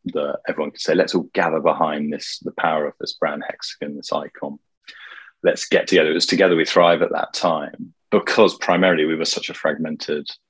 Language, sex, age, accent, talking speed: English, male, 30-49, British, 200 wpm